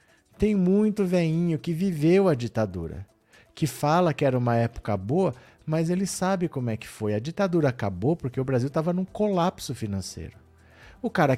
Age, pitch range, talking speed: 50-69, 115-150 Hz, 175 wpm